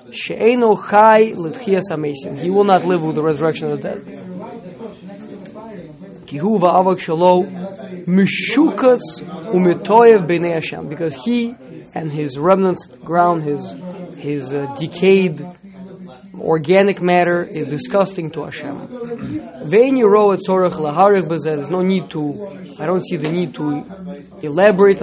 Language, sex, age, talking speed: English, male, 20-39, 90 wpm